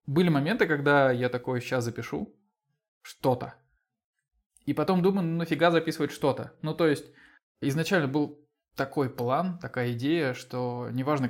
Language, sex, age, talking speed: Russian, male, 20-39, 140 wpm